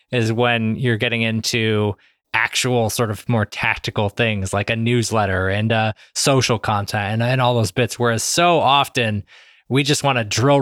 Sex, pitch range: male, 115-135 Hz